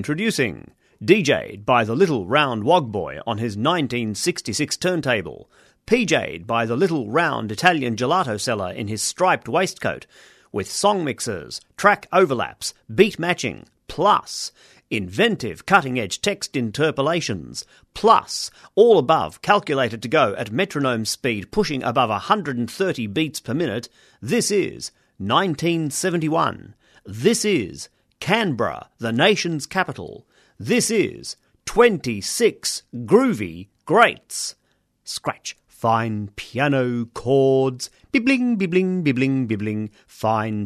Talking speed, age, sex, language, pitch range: 110 wpm, 40-59, male, English, 115-175 Hz